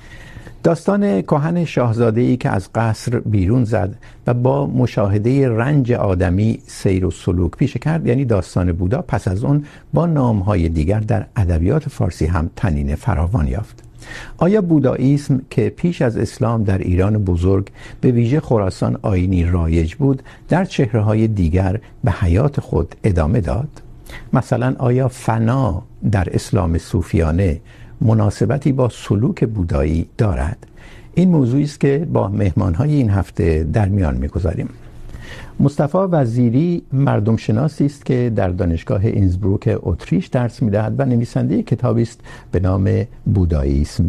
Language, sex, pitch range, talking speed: Urdu, male, 95-135 Hz, 135 wpm